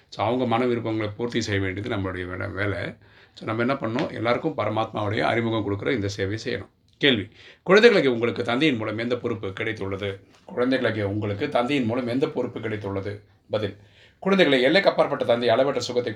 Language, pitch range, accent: Tamil, 105-120 Hz, native